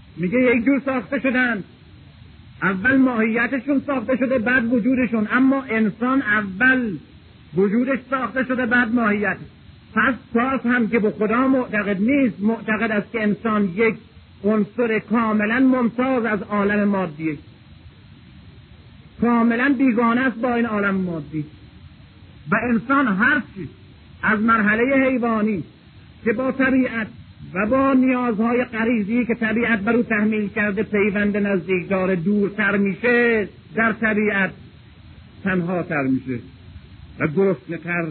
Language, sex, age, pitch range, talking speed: Persian, male, 50-69, 190-245 Hz, 120 wpm